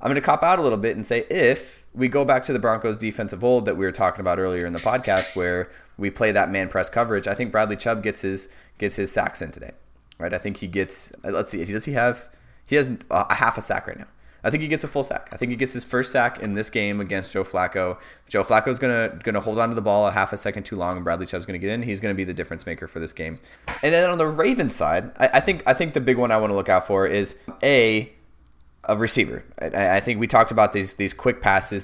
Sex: male